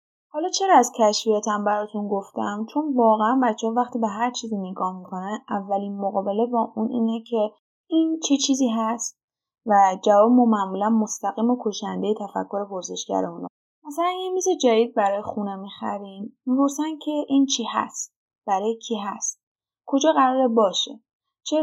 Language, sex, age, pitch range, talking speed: Persian, female, 10-29, 200-265 Hz, 155 wpm